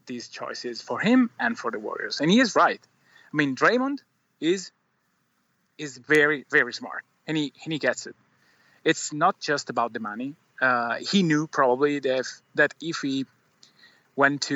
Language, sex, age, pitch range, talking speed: English, male, 30-49, 125-155 Hz, 175 wpm